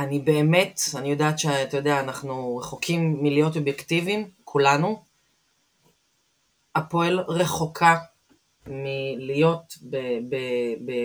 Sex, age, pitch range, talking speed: female, 30-49, 135-175 Hz, 90 wpm